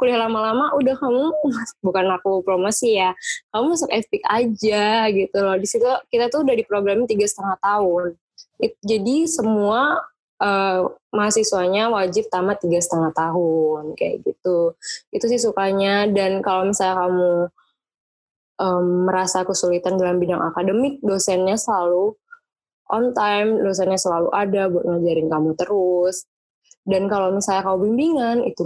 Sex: female